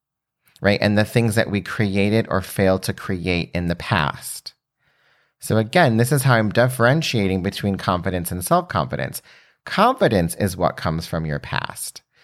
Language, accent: English, American